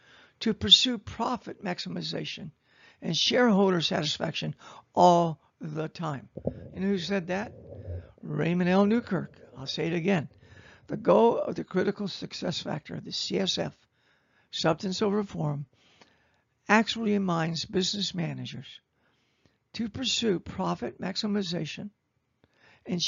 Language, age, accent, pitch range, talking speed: English, 60-79, American, 155-195 Hz, 110 wpm